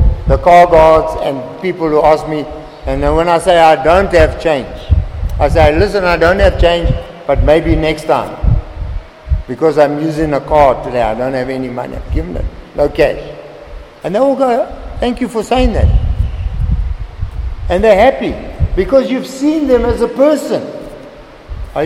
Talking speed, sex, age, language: 175 wpm, male, 60-79, English